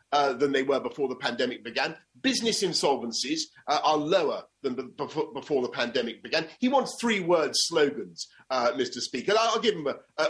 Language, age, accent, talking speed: English, 40-59, British, 180 wpm